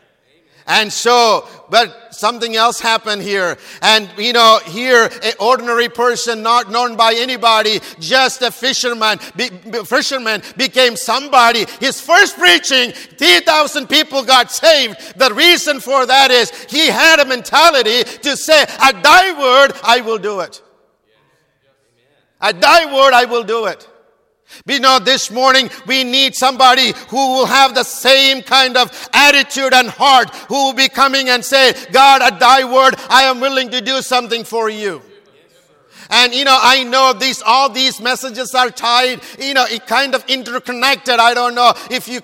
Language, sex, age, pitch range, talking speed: English, male, 50-69, 240-265 Hz, 160 wpm